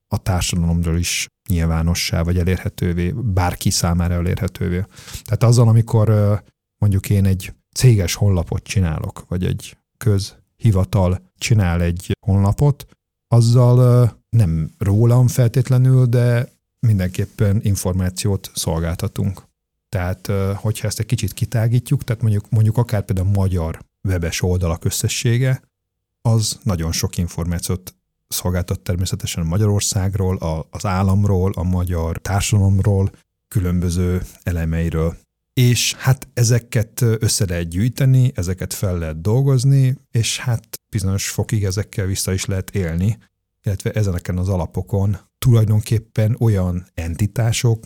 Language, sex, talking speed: Hungarian, male, 110 wpm